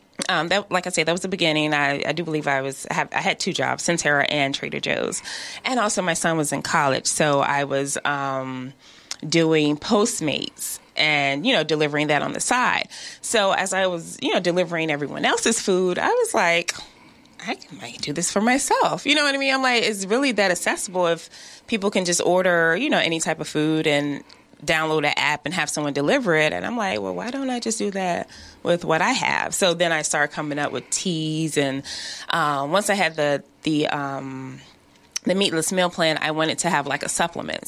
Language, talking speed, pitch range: English, 220 wpm, 145-180 Hz